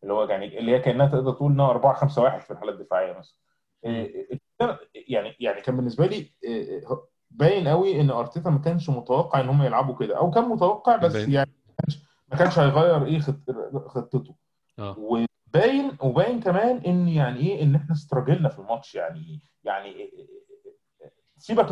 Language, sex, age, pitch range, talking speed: Arabic, male, 20-39, 130-170 Hz, 155 wpm